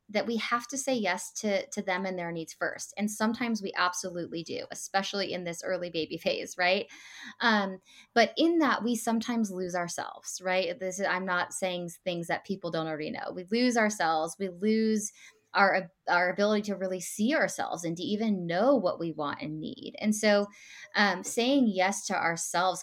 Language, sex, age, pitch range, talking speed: English, female, 20-39, 180-215 Hz, 190 wpm